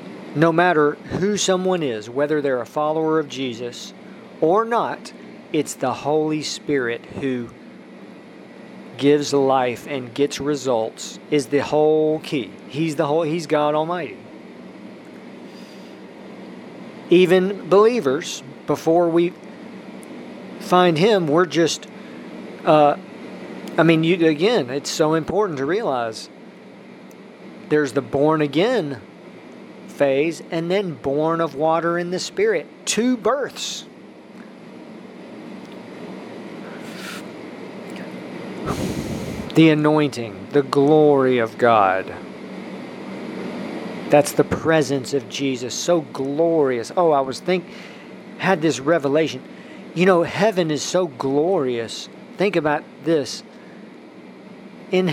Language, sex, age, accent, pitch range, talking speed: English, male, 40-59, American, 140-180 Hz, 100 wpm